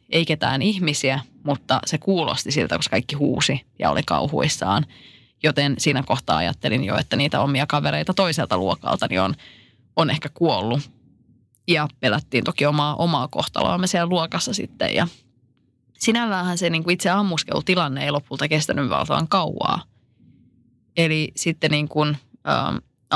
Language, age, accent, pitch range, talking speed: Finnish, 20-39, native, 135-165 Hz, 140 wpm